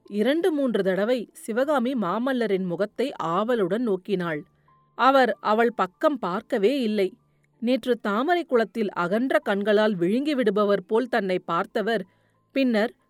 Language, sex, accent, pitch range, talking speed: Tamil, female, native, 195-265 Hz, 105 wpm